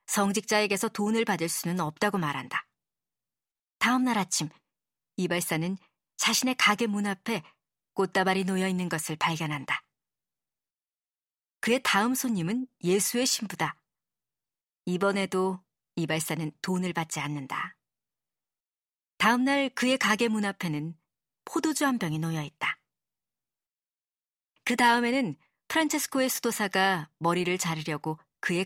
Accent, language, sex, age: native, Korean, male, 40-59